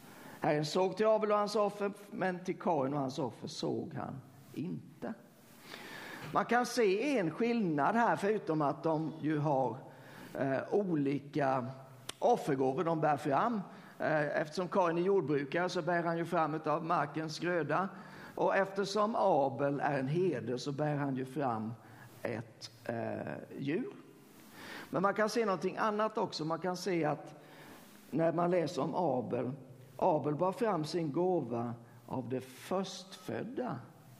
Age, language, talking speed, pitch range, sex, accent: 50-69, Swedish, 145 wpm, 140-185 Hz, male, native